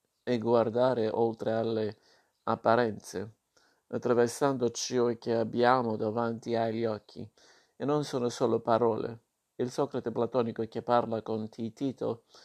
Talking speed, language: 115 wpm, Italian